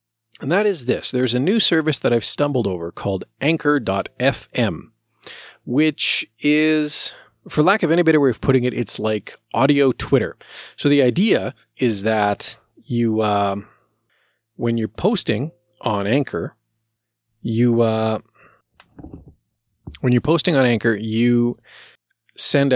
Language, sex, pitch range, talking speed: English, male, 110-145 Hz, 130 wpm